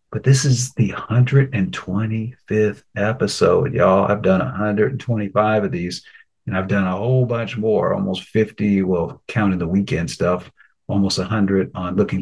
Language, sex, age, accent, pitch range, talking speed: English, male, 50-69, American, 95-115 Hz, 145 wpm